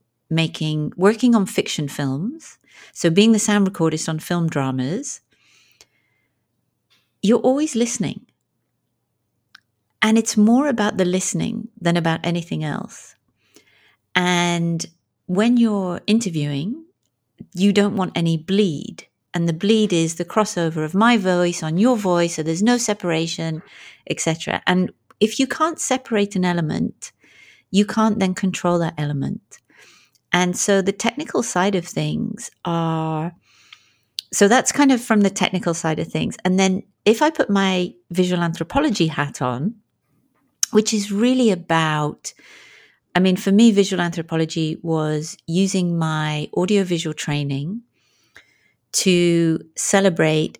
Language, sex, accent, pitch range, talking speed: English, female, British, 160-215 Hz, 130 wpm